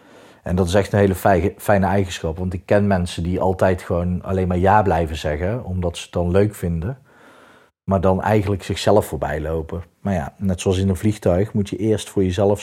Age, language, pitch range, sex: 40-59, Dutch, 90-100 Hz, male